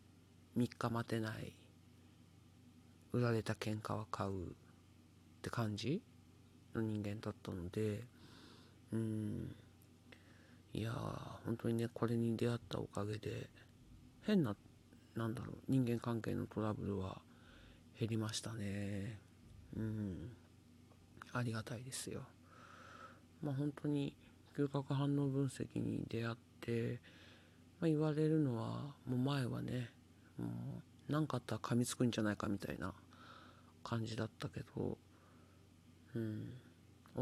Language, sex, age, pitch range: Japanese, male, 40-59, 95-125 Hz